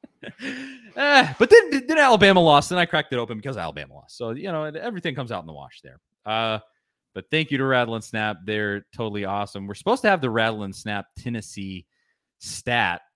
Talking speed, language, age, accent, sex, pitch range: 205 wpm, English, 30-49, American, male, 105-150 Hz